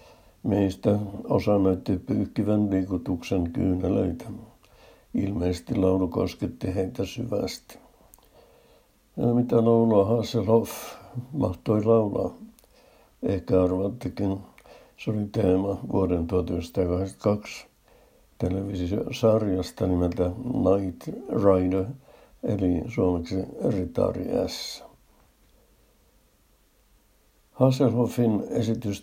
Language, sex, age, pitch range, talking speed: Finnish, male, 60-79, 95-110 Hz, 70 wpm